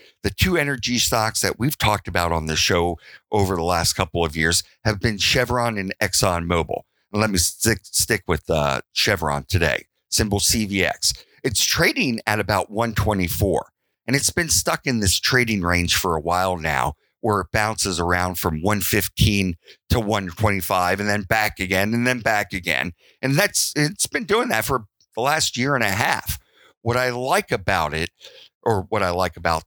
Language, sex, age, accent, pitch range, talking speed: English, male, 50-69, American, 90-115 Hz, 180 wpm